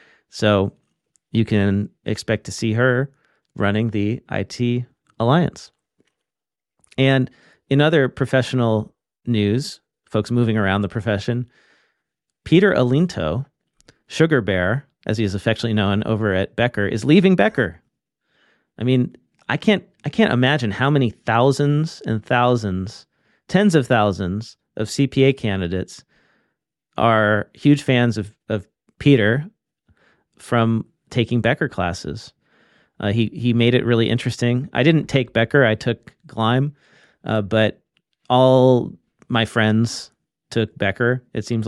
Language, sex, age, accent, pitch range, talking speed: English, male, 40-59, American, 105-130 Hz, 125 wpm